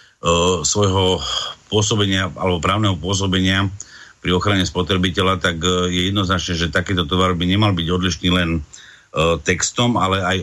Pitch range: 90-100 Hz